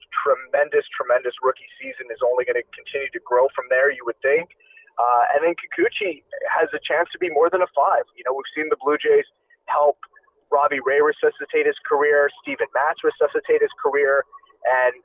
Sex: male